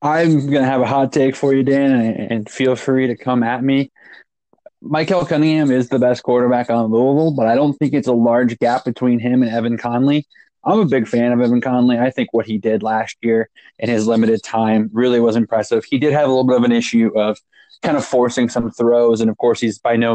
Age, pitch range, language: 20-39, 115-130 Hz, English